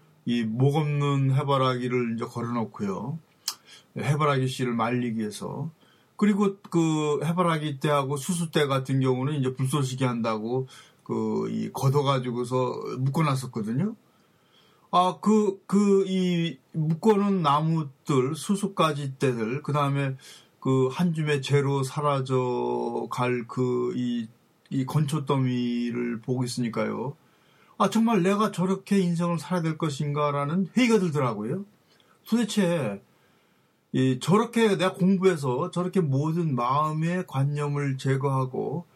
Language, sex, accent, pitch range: Korean, male, native, 130-175 Hz